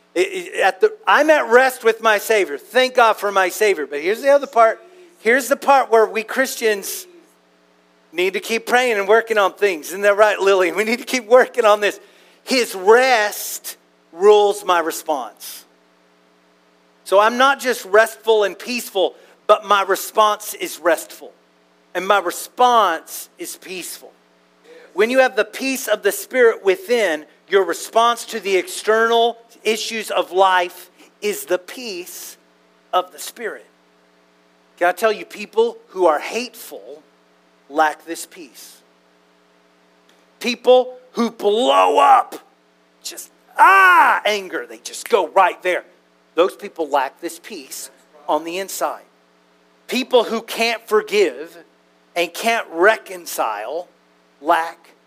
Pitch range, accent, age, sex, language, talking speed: 165-255 Hz, American, 40-59, male, English, 140 wpm